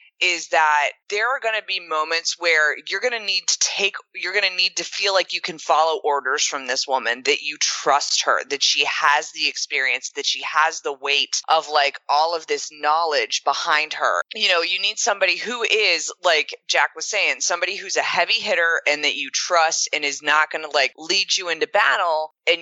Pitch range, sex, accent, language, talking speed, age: 150-200 Hz, female, American, English, 220 wpm, 20-39